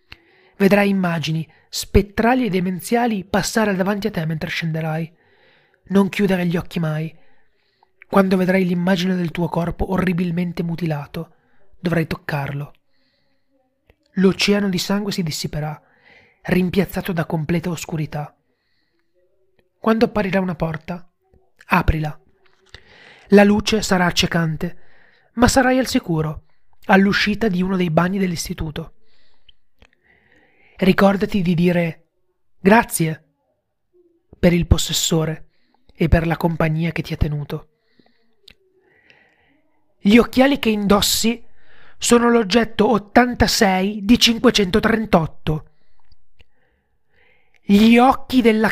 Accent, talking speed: native, 100 wpm